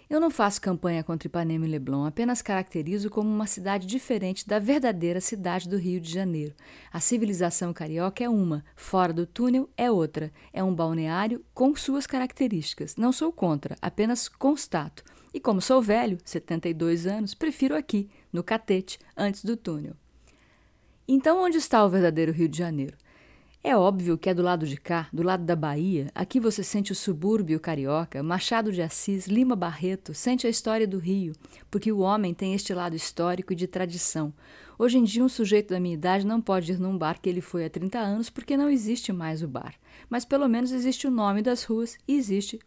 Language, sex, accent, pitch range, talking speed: Portuguese, female, Brazilian, 170-230 Hz, 190 wpm